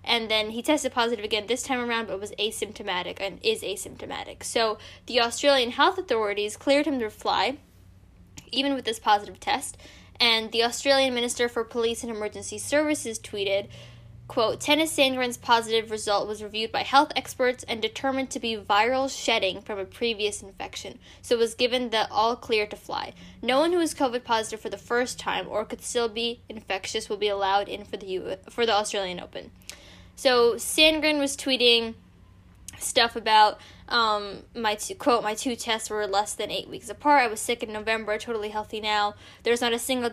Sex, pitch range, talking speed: female, 210-250 Hz, 185 wpm